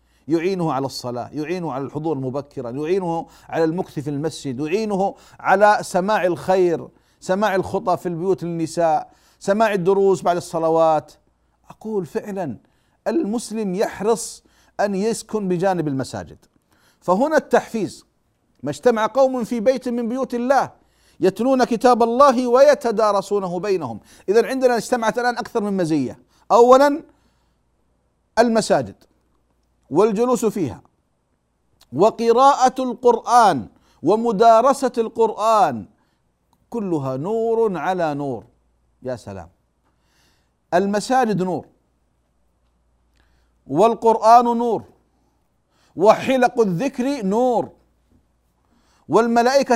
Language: Arabic